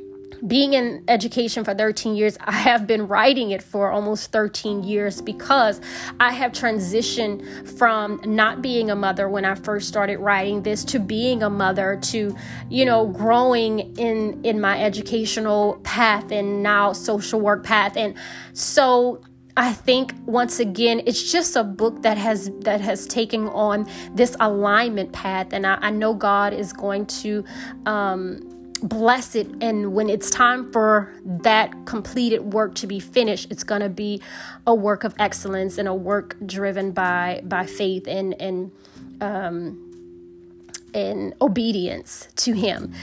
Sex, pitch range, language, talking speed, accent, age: female, 195-225 Hz, English, 155 wpm, American, 20-39